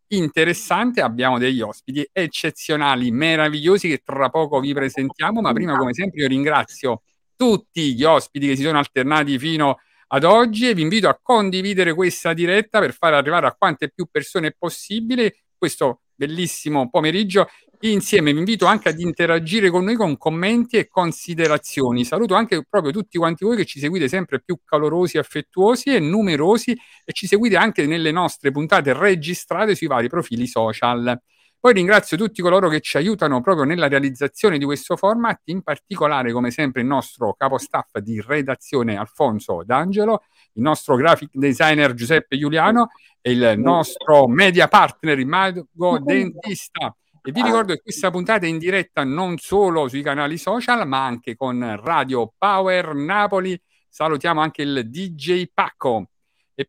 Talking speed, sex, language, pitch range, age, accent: 155 wpm, male, Italian, 140-195 Hz, 50-69, native